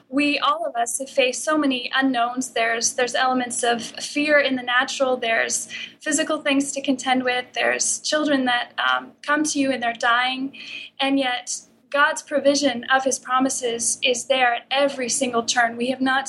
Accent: American